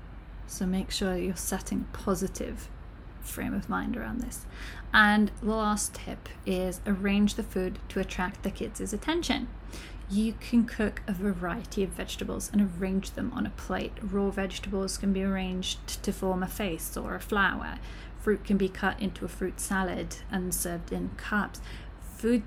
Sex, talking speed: female, 170 wpm